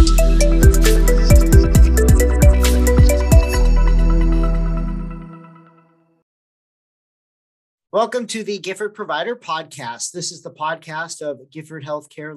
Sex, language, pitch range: male, English, 125-170 Hz